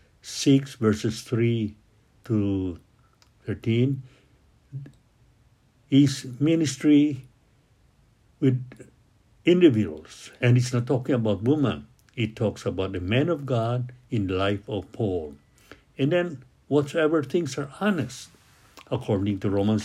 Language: English